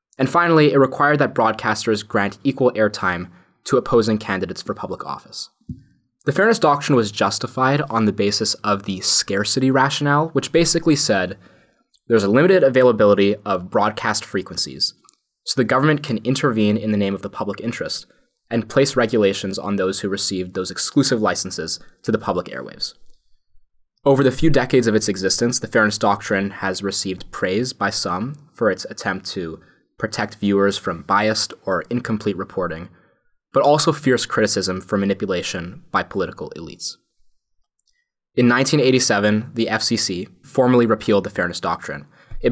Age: 20-39